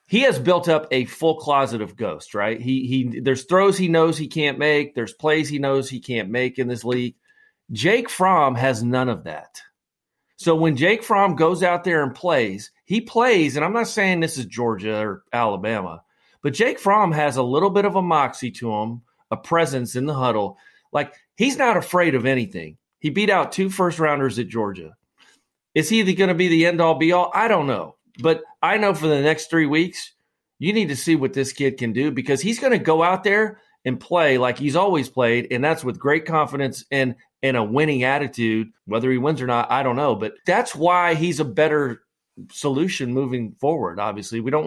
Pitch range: 125-180 Hz